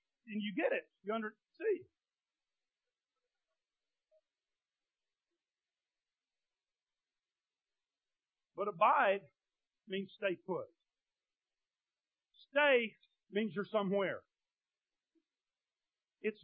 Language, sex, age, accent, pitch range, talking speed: English, male, 50-69, American, 175-250 Hz, 60 wpm